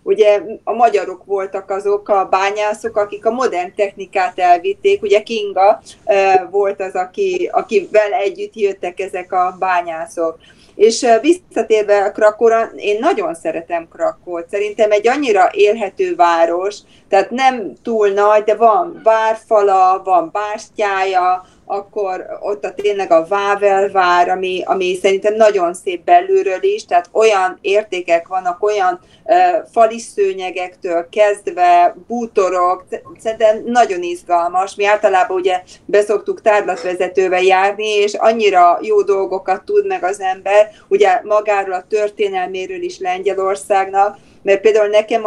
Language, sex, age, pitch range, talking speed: Hungarian, female, 30-49, 190-250 Hz, 125 wpm